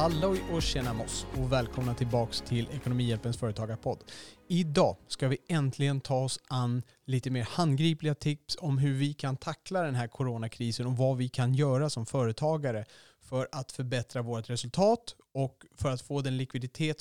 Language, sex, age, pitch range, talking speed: Swedish, male, 30-49, 125-155 Hz, 165 wpm